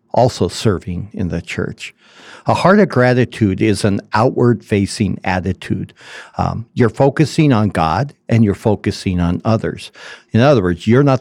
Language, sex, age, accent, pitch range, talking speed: English, male, 60-79, American, 100-125 Hz, 155 wpm